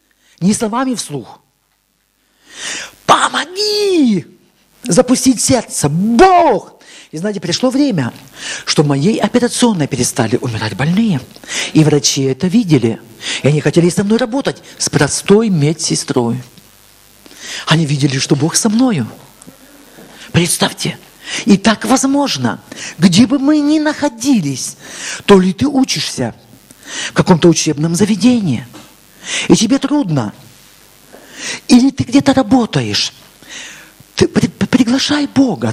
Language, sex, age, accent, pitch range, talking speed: Russian, male, 50-69, native, 155-255 Hz, 105 wpm